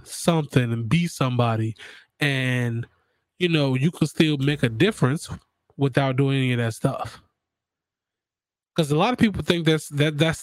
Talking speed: 160 wpm